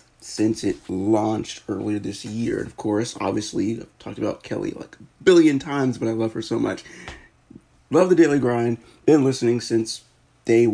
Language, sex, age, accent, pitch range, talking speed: English, male, 30-49, American, 110-125 Hz, 180 wpm